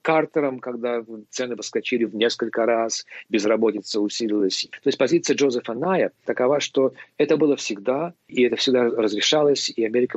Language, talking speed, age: Russian, 150 wpm, 40-59